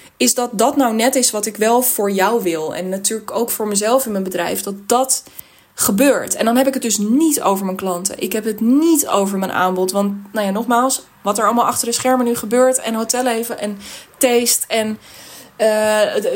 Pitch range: 200-245 Hz